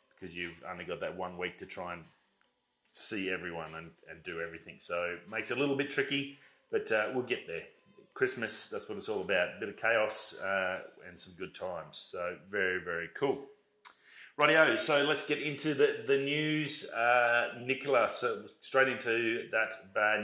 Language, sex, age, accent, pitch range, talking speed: English, male, 30-49, Australian, 100-135 Hz, 185 wpm